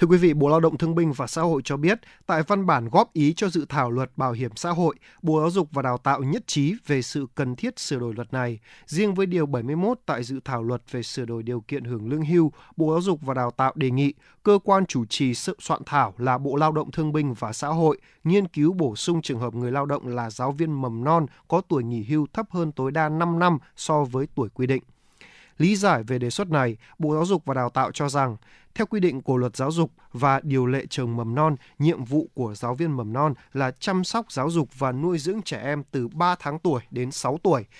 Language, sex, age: Vietnamese, male, 20-39